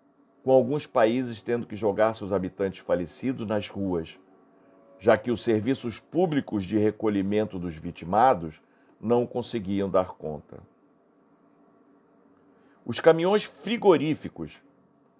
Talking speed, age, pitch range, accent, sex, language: 105 wpm, 50-69, 95-130 Hz, Brazilian, male, Portuguese